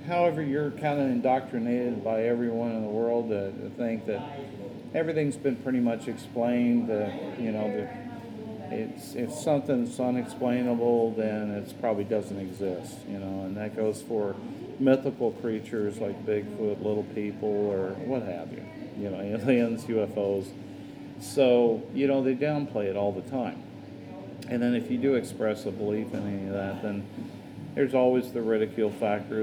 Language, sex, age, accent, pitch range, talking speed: English, male, 50-69, American, 105-125 Hz, 160 wpm